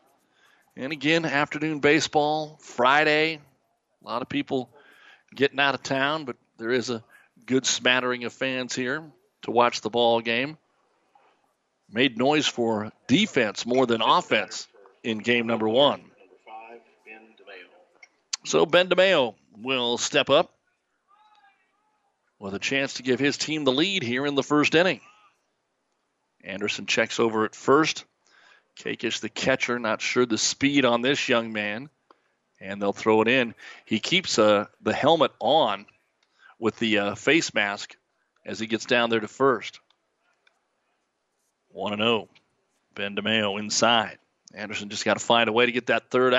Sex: male